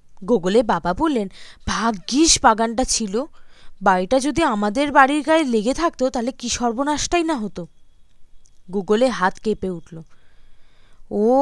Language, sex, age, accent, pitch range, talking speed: Bengali, female, 20-39, native, 180-265 Hz, 120 wpm